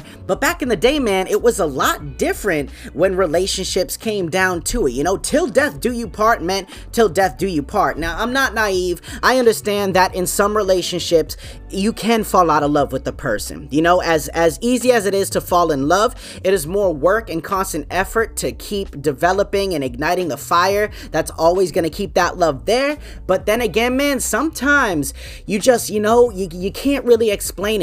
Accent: American